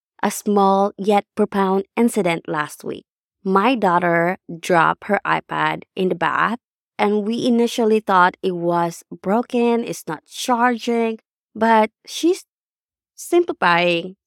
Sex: female